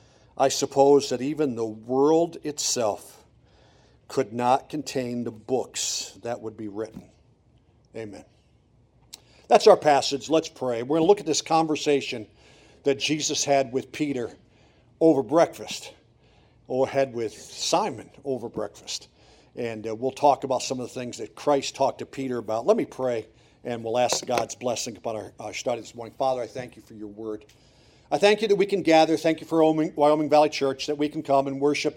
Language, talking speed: English, 185 wpm